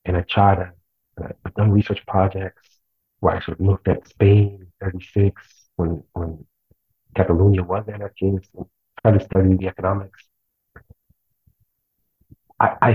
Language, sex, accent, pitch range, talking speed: English, male, American, 90-105 Hz, 130 wpm